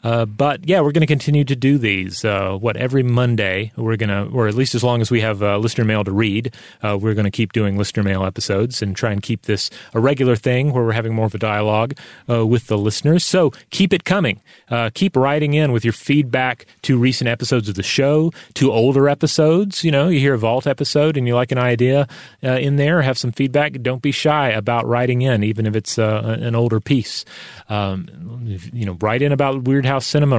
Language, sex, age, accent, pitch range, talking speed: English, male, 30-49, American, 110-140 Hz, 230 wpm